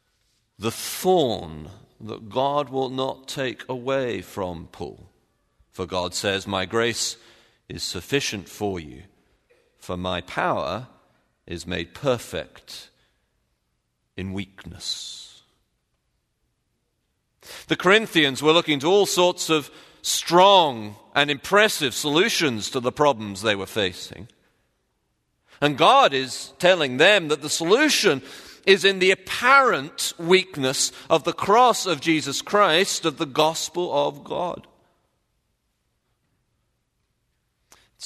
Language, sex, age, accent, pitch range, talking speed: English, male, 40-59, British, 110-160 Hz, 110 wpm